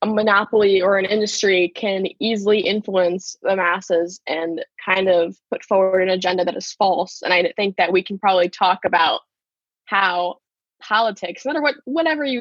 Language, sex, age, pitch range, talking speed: English, female, 10-29, 180-220 Hz, 175 wpm